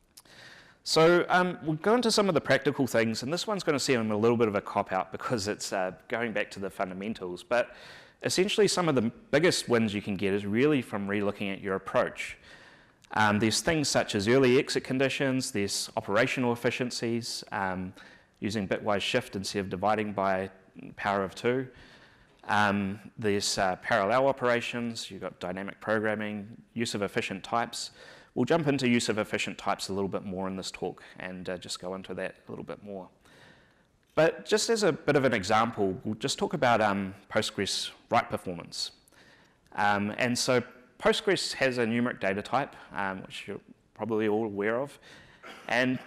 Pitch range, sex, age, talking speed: 100-125 Hz, male, 30-49, 180 wpm